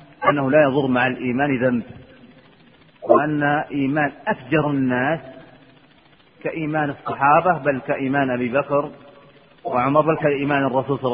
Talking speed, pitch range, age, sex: 115 wpm, 125-150 Hz, 40-59, male